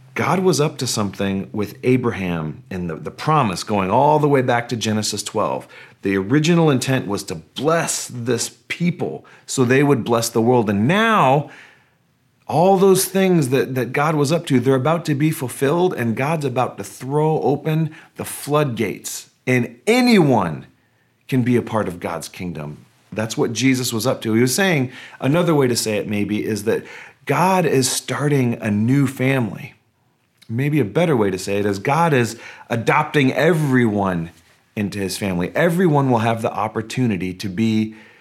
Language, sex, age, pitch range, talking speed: English, male, 40-59, 105-145 Hz, 175 wpm